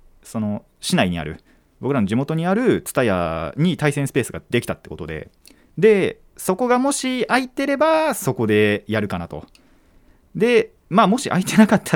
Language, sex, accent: Japanese, male, native